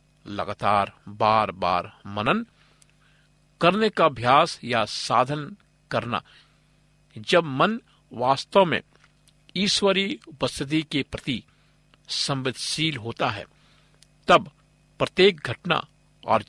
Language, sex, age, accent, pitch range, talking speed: Hindi, male, 50-69, native, 125-160 Hz, 90 wpm